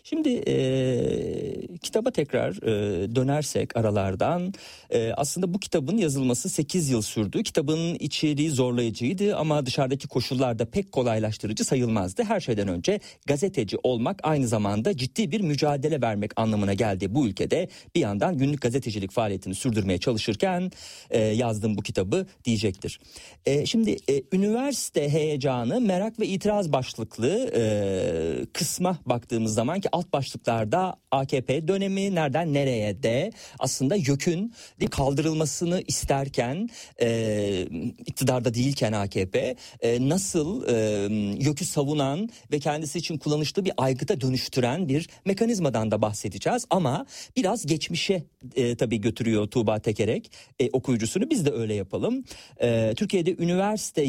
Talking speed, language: 125 wpm, Turkish